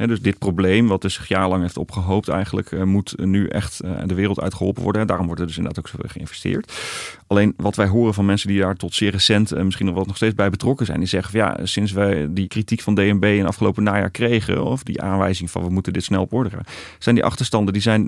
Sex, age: male, 30-49